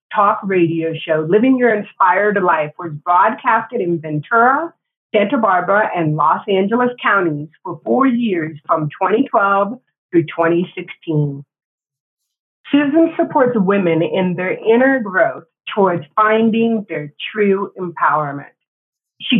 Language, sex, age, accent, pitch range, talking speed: English, female, 30-49, American, 165-235 Hz, 115 wpm